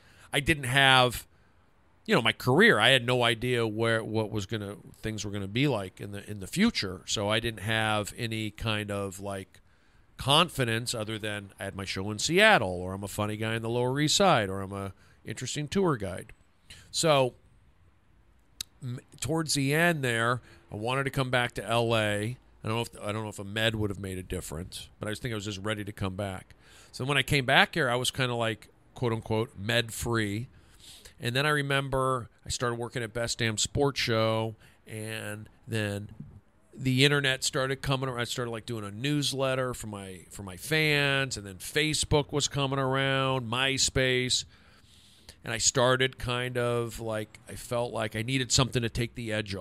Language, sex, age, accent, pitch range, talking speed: English, male, 40-59, American, 105-130 Hz, 200 wpm